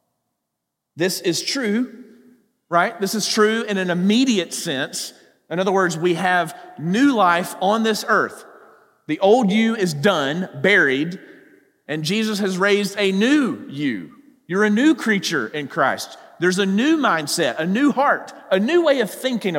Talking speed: 160 wpm